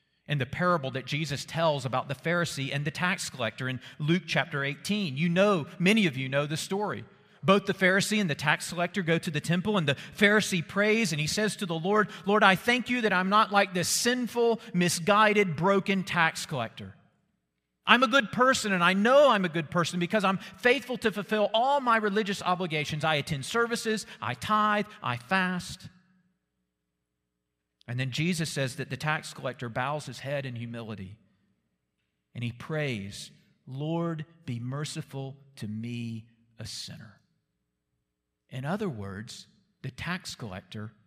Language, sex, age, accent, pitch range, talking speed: English, male, 40-59, American, 130-195 Hz, 170 wpm